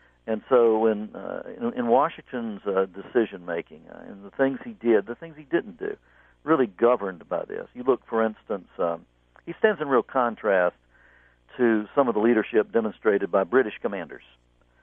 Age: 60-79